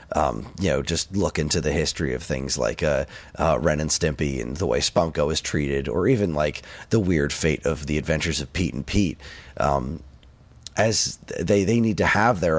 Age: 30-49